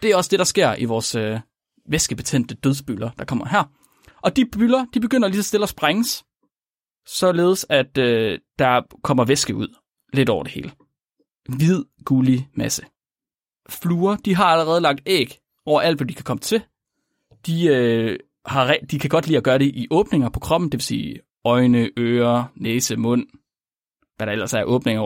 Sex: male